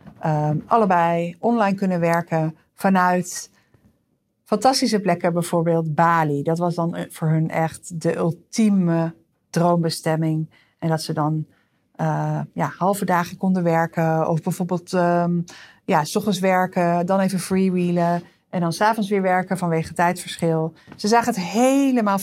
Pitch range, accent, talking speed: 170-210 Hz, Dutch, 135 wpm